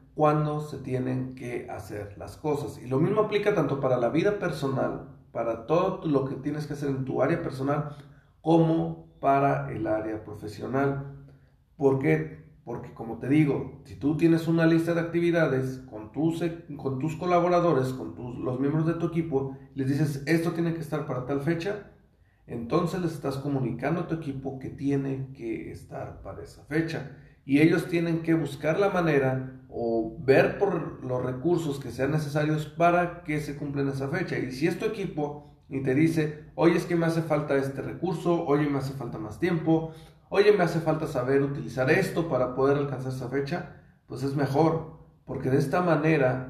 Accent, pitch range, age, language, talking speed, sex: Mexican, 130-165 Hz, 40-59, Spanish, 185 wpm, male